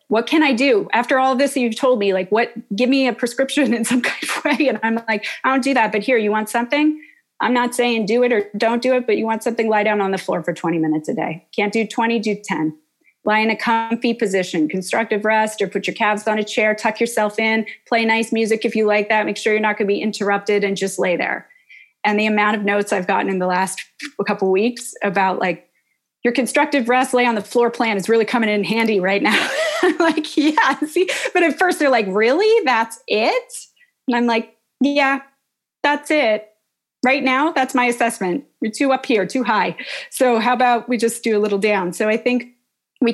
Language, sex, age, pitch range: English, female, 30-49, 210-260 Hz